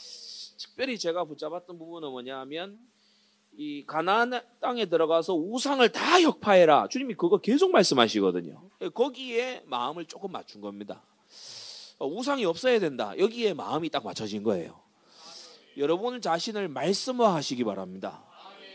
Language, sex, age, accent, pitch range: Korean, male, 30-49, native, 155-250 Hz